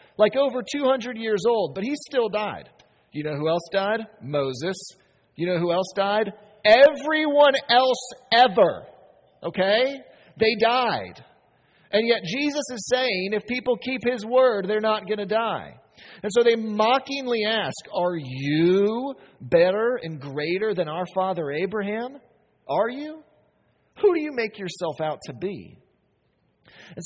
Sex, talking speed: male, 145 wpm